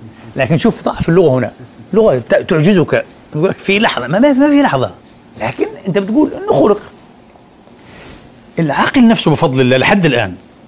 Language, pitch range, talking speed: Arabic, 150-205 Hz, 140 wpm